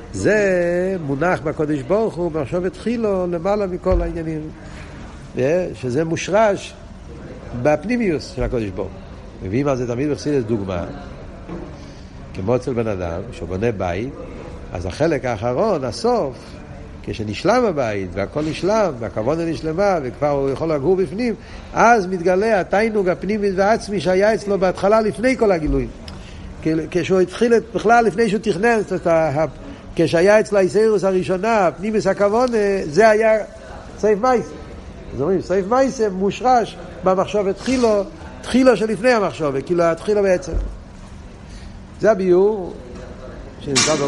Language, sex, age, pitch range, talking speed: Hebrew, male, 60-79, 125-200 Hz, 125 wpm